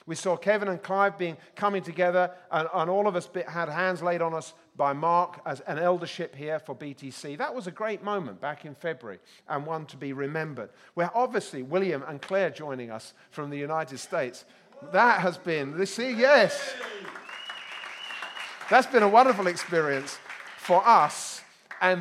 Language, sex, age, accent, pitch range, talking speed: English, male, 40-59, British, 135-185 Hz, 175 wpm